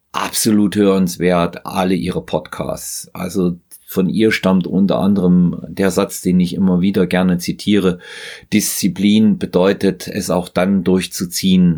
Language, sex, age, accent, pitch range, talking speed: German, male, 40-59, German, 90-100 Hz, 125 wpm